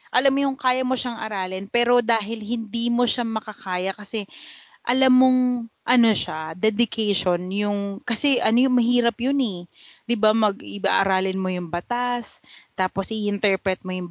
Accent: native